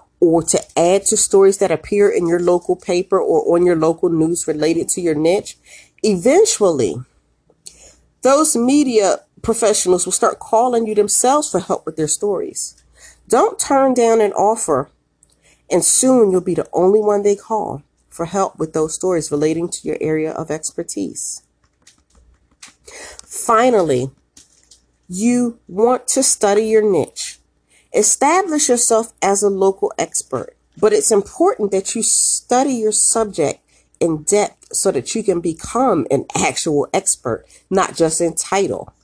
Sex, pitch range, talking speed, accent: female, 165-230 Hz, 145 wpm, American